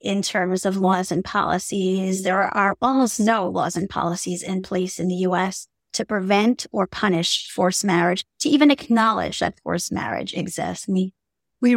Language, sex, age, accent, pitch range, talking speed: English, female, 30-49, American, 185-230 Hz, 165 wpm